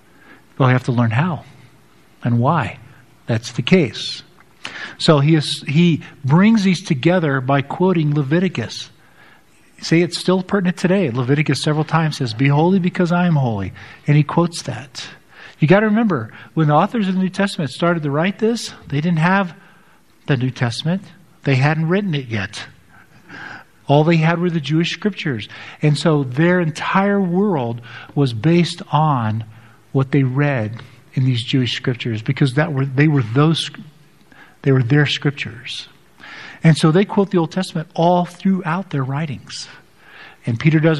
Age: 50-69